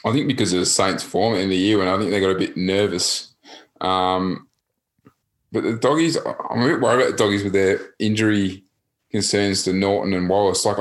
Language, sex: English, male